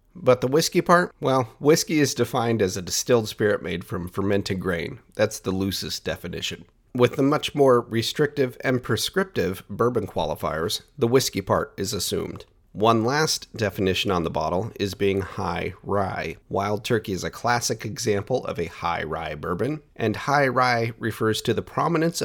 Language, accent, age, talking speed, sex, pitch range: English, American, 40-59, 165 wpm, male, 95-125 Hz